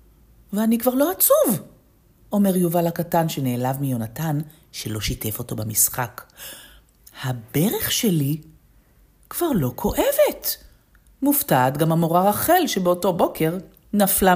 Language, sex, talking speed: Hebrew, female, 105 wpm